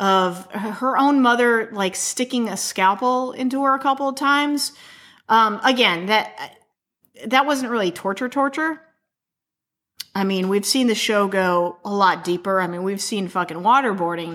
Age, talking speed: 30-49, 160 wpm